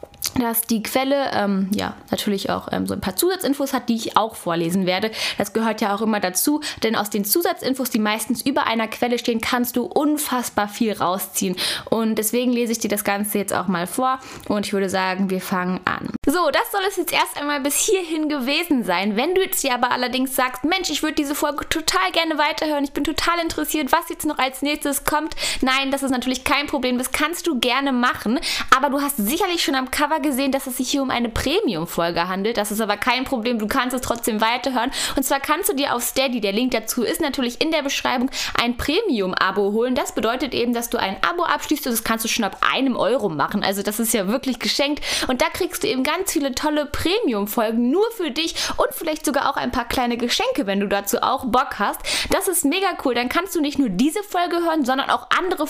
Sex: female